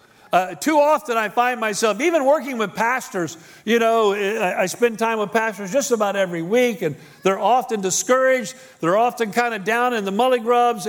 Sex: male